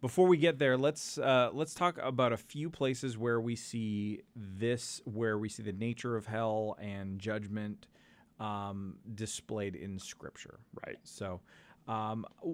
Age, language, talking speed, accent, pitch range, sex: 30-49, English, 155 wpm, American, 95-120 Hz, male